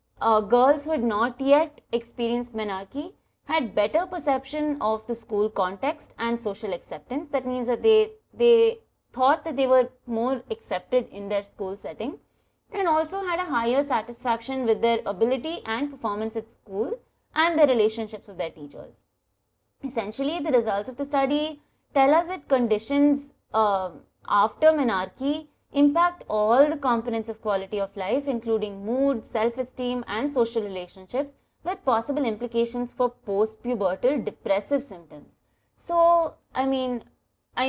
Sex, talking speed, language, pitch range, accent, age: female, 145 wpm, English, 215-285 Hz, Indian, 20-39